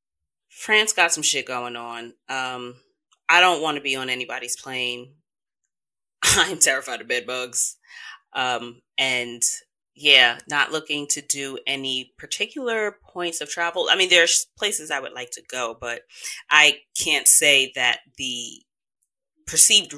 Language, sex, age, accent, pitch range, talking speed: English, female, 30-49, American, 130-210 Hz, 140 wpm